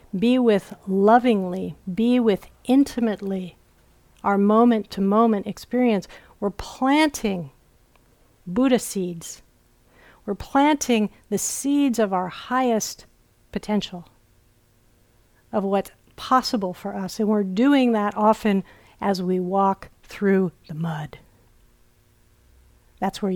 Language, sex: English, female